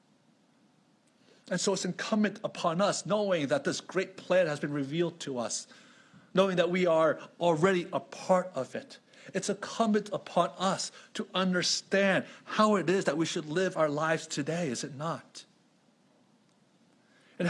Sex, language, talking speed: male, English, 155 wpm